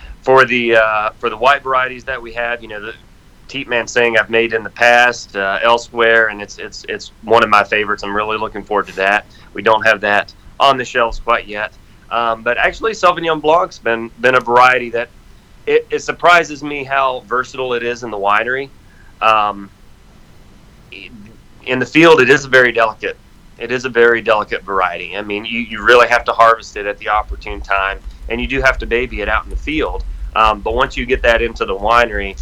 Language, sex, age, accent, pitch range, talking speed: English, male, 30-49, American, 105-120 Hz, 215 wpm